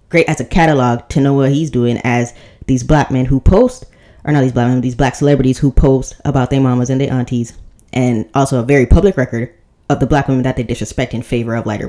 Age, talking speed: 10-29, 240 wpm